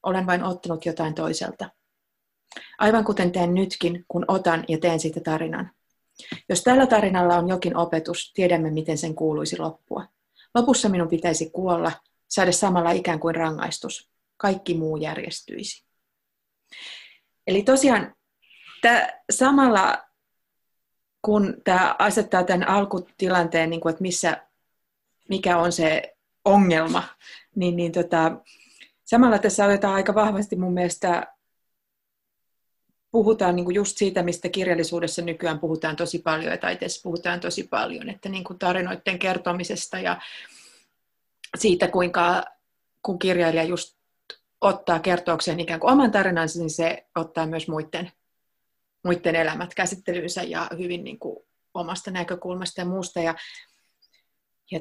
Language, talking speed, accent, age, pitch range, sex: Finnish, 125 wpm, native, 30-49, 165-195 Hz, female